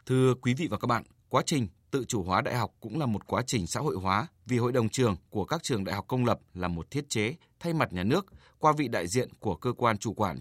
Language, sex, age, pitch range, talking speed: Vietnamese, male, 20-39, 105-140 Hz, 280 wpm